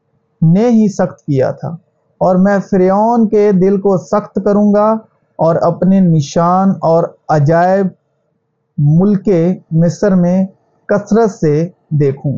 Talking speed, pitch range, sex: 120 wpm, 150-200 Hz, male